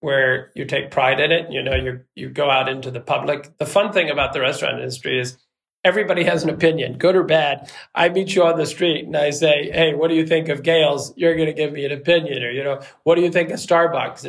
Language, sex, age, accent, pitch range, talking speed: English, male, 40-59, American, 130-160 Hz, 255 wpm